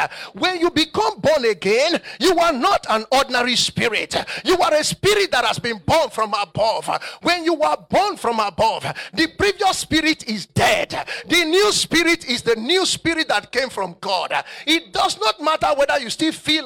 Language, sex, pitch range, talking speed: English, male, 285-375 Hz, 185 wpm